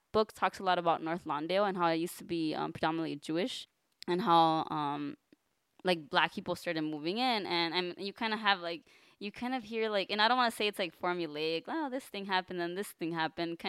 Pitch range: 165-195 Hz